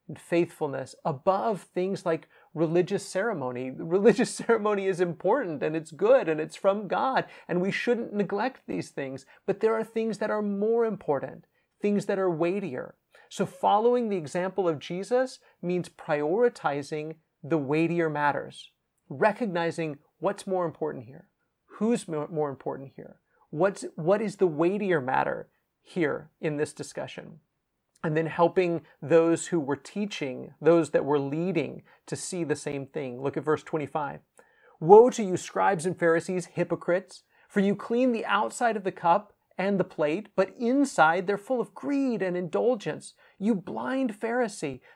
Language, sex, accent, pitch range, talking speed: English, male, American, 160-215 Hz, 150 wpm